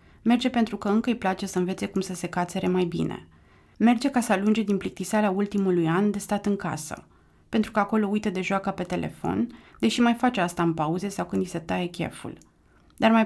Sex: female